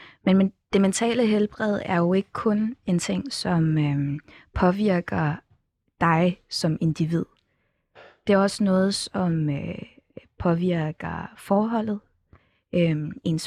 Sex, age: female, 20-39